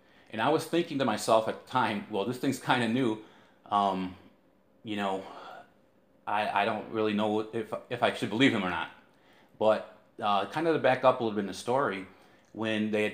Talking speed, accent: 215 wpm, American